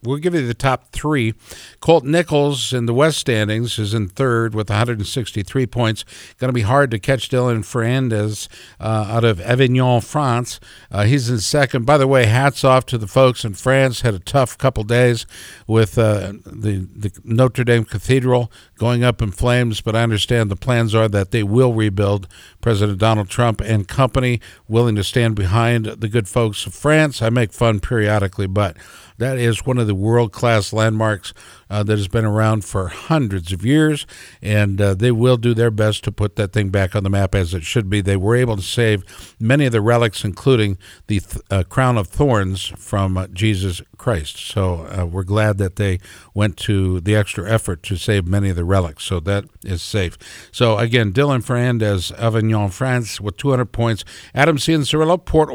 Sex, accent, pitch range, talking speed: male, American, 105-130 Hz, 190 wpm